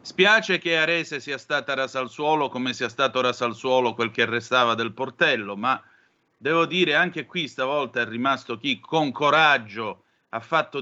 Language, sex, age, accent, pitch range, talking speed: Italian, male, 40-59, native, 120-165 Hz, 175 wpm